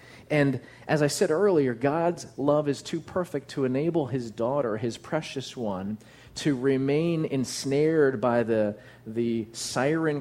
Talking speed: 140 wpm